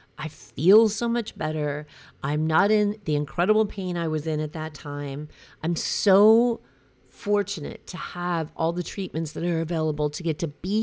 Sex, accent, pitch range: female, American, 160-215 Hz